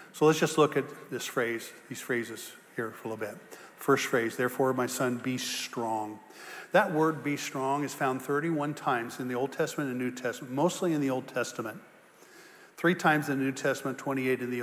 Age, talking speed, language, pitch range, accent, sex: 50-69, 205 wpm, English, 135-165 Hz, American, male